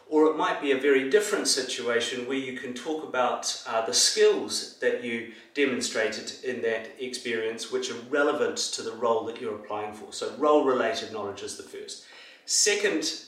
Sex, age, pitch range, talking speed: male, 30-49, 125-205 Hz, 175 wpm